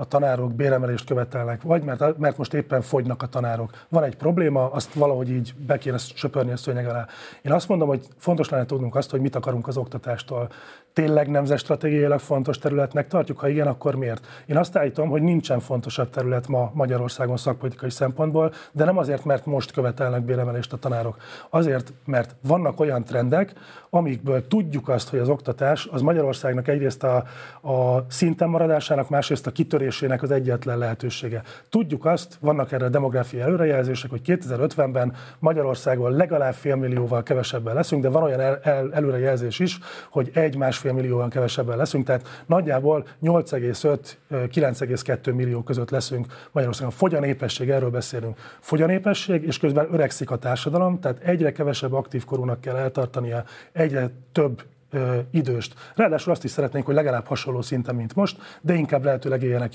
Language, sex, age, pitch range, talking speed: Hungarian, male, 30-49, 125-150 Hz, 160 wpm